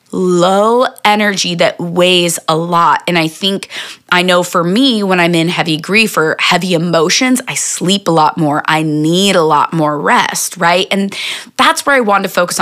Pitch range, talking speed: 165-215 Hz, 190 wpm